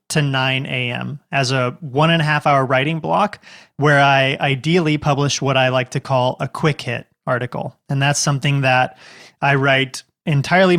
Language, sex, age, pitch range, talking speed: English, male, 20-39, 135-155 Hz, 180 wpm